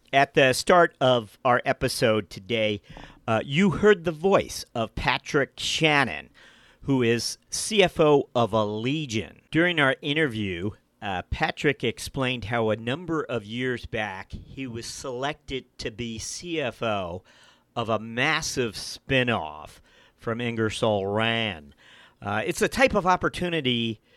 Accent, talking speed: American, 130 wpm